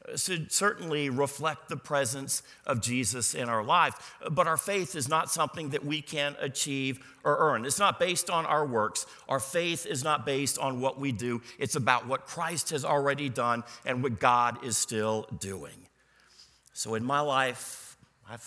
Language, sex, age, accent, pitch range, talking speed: English, male, 50-69, American, 125-170 Hz, 180 wpm